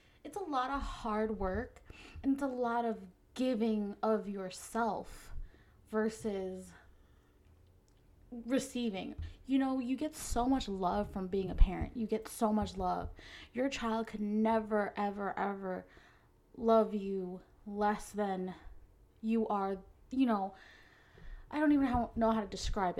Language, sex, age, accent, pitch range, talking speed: English, female, 20-39, American, 195-250 Hz, 140 wpm